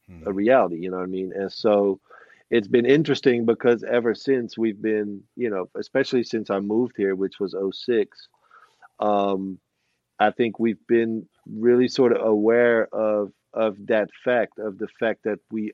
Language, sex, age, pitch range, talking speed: English, male, 40-59, 100-120 Hz, 175 wpm